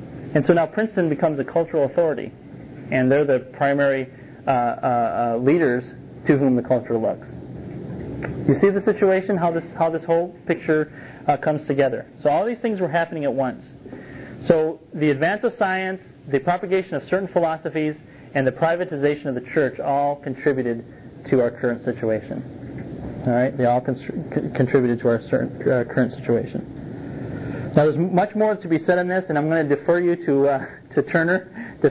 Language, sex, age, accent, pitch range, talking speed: English, male, 30-49, American, 130-165 Hz, 180 wpm